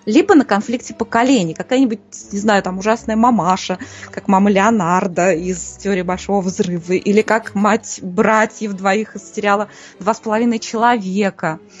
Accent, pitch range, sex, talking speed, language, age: native, 195-260 Hz, female, 140 wpm, Russian, 20-39